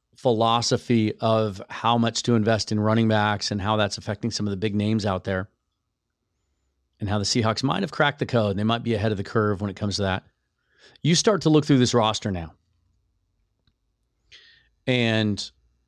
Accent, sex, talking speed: American, male, 190 wpm